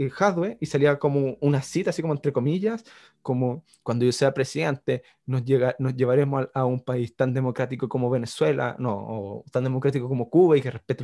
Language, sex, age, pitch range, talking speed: Spanish, male, 20-39, 130-165 Hz, 190 wpm